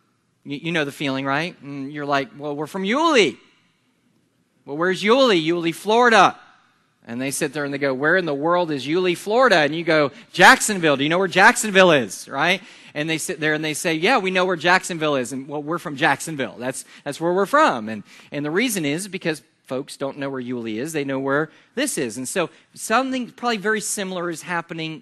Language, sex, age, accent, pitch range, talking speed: English, male, 40-59, American, 140-175 Hz, 215 wpm